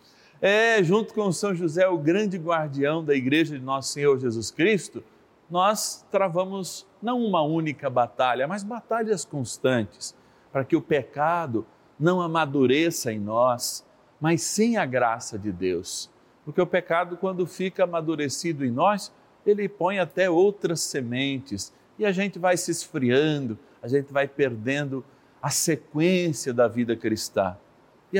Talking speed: 145 wpm